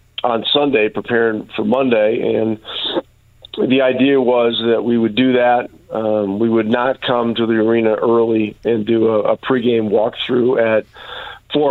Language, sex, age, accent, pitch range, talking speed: English, male, 40-59, American, 110-125 Hz, 160 wpm